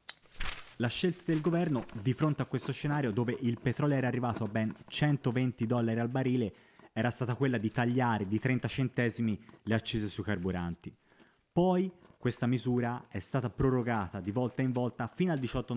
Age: 30-49